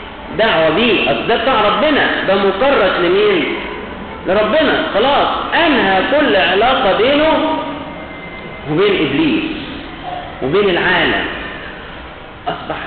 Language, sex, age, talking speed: Arabic, male, 50-69, 75 wpm